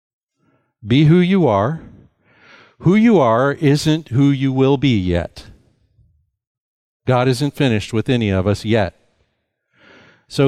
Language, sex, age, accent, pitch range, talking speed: English, male, 60-79, American, 110-160 Hz, 125 wpm